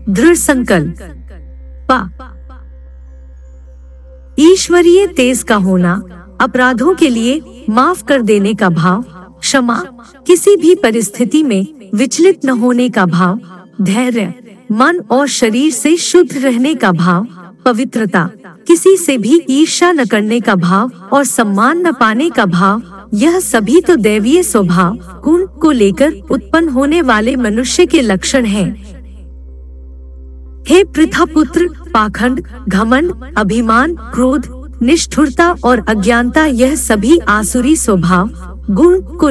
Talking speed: 120 wpm